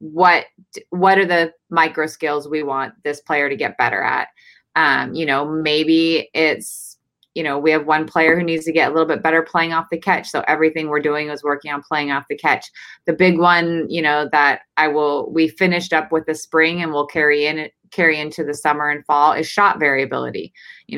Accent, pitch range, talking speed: American, 150-170 Hz, 215 wpm